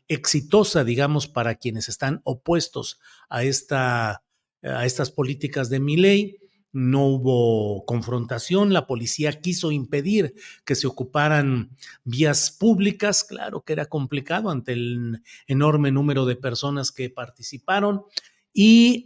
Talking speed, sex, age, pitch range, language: 120 wpm, male, 50-69, 130-185 Hz, Spanish